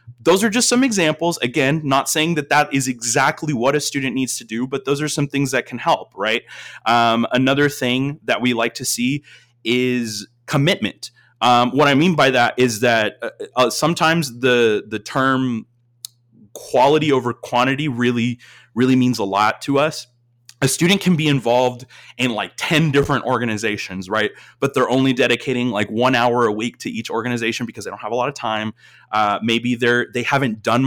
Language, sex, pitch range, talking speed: English, male, 115-140 Hz, 190 wpm